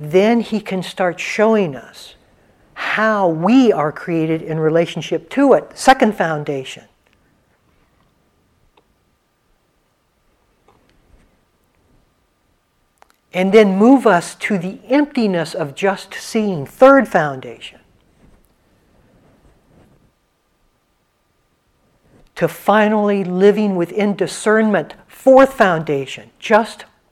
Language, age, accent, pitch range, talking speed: English, 60-79, American, 155-215 Hz, 80 wpm